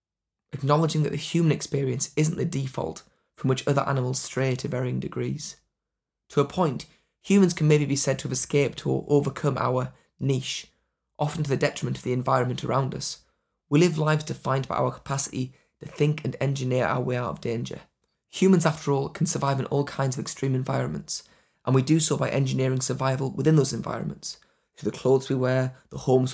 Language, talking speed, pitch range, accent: English, 190 wpm, 130-150 Hz, British